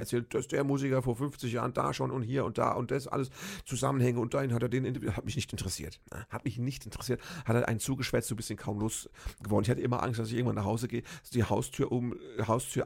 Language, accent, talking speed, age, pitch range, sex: German, German, 245 wpm, 50-69, 105-135 Hz, male